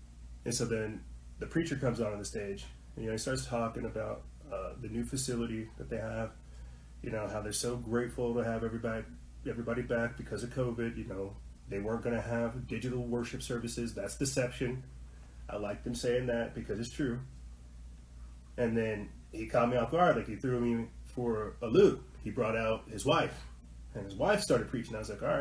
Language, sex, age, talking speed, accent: English, male, 20-39, 205 wpm, American